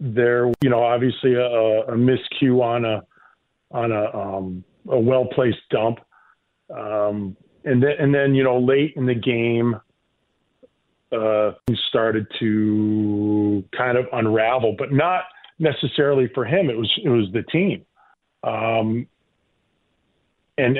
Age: 40-59